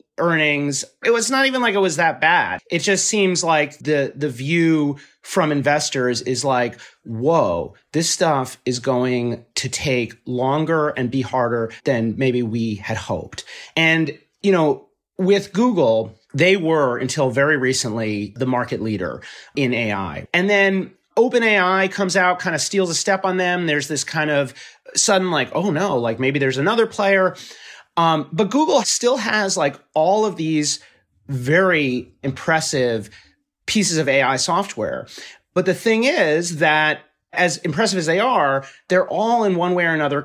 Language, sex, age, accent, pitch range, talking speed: English, male, 30-49, American, 135-185 Hz, 160 wpm